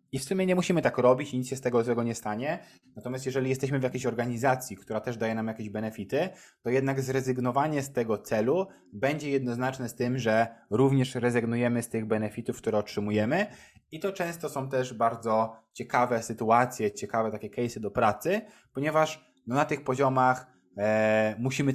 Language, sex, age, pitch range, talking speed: Polish, male, 20-39, 110-135 Hz, 175 wpm